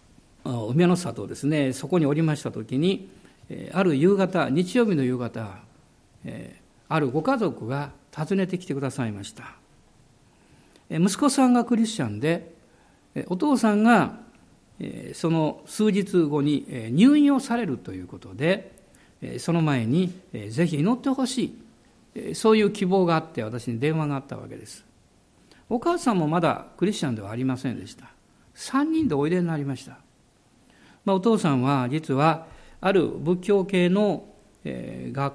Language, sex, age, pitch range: Japanese, male, 50-69, 135-205 Hz